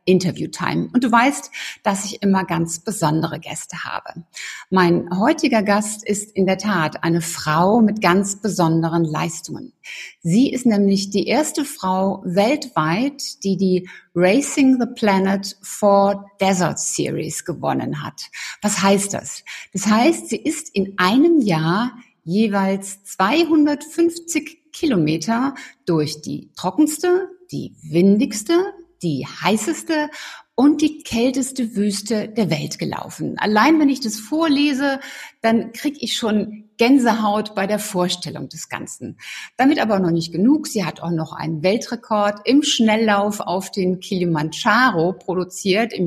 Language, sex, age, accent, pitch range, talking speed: German, female, 60-79, German, 180-245 Hz, 135 wpm